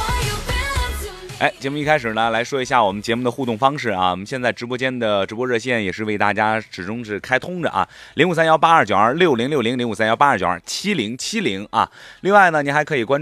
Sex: male